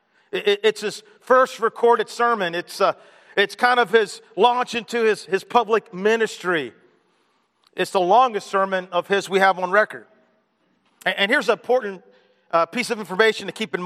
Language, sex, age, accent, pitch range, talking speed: English, male, 40-59, American, 195-245 Hz, 170 wpm